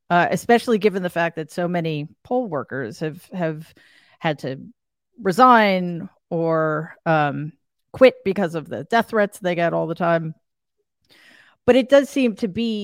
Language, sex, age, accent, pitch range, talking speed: English, female, 40-59, American, 175-245 Hz, 160 wpm